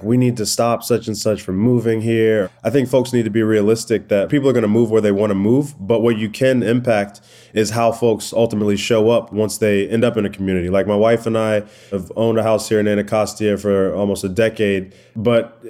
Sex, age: male, 20-39